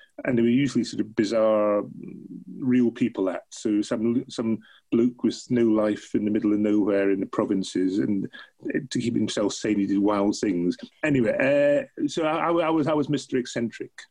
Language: English